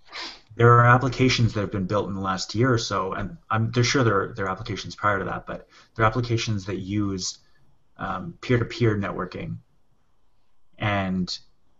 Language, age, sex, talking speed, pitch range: English, 30-49, male, 170 wpm, 100-120 Hz